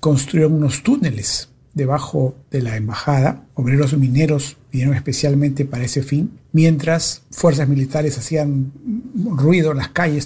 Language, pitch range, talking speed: Spanish, 135-155 Hz, 135 wpm